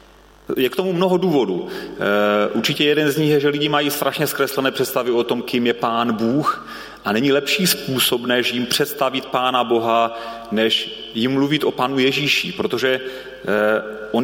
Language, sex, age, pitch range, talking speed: Czech, male, 30-49, 115-145 Hz, 165 wpm